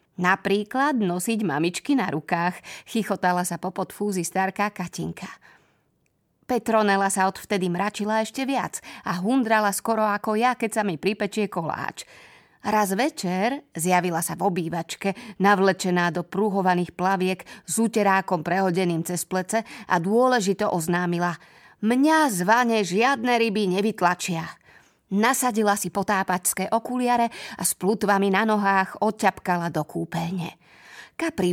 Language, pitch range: Slovak, 180-220 Hz